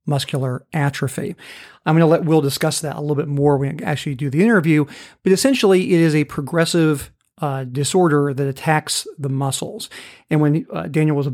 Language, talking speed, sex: English, 195 wpm, male